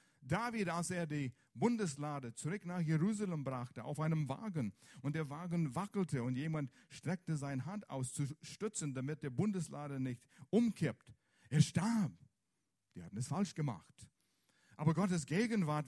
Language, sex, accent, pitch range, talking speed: German, male, German, 120-165 Hz, 145 wpm